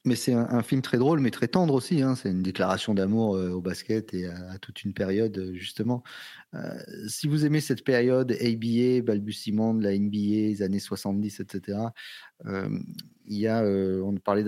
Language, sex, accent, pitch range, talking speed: French, male, French, 95-115 Hz, 200 wpm